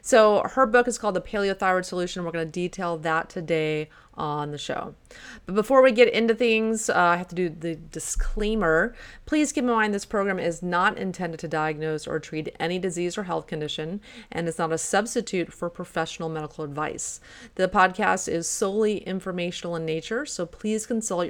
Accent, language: American, English